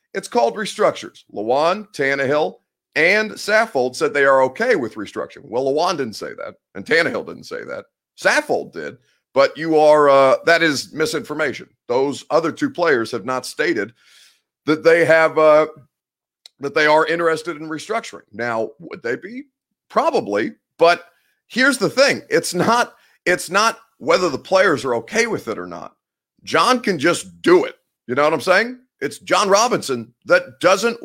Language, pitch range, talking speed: English, 140-185 Hz, 165 wpm